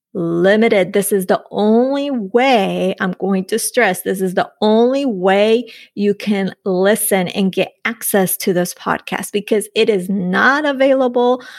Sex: female